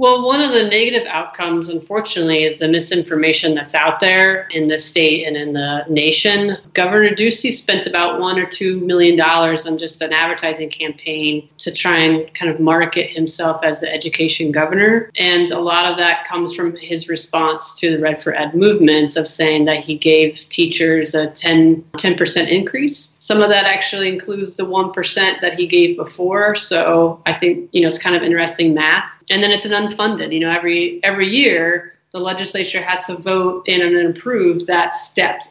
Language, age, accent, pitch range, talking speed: English, 30-49, American, 165-200 Hz, 190 wpm